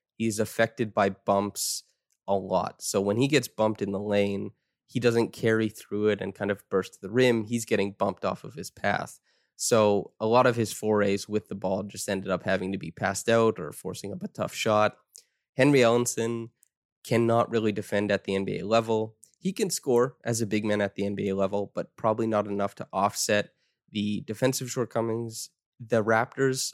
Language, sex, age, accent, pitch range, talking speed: English, male, 20-39, American, 100-115 Hz, 195 wpm